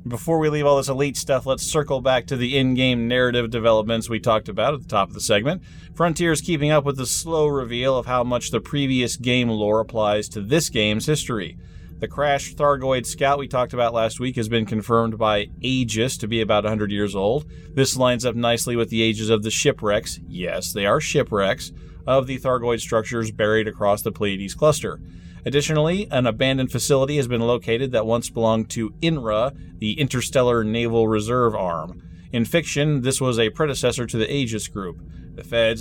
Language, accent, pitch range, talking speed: English, American, 105-130 Hz, 195 wpm